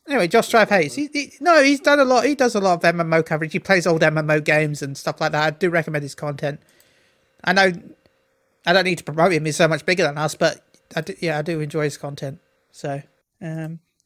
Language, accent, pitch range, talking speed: English, British, 155-195 Hz, 245 wpm